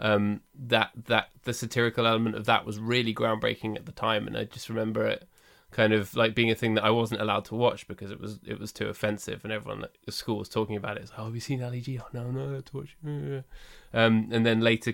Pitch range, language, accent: 110-120 Hz, English, British